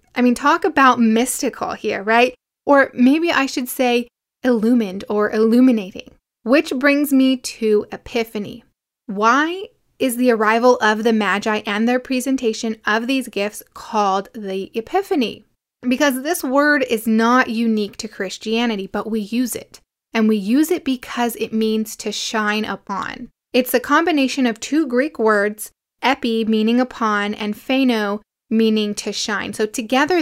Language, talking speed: English, 150 wpm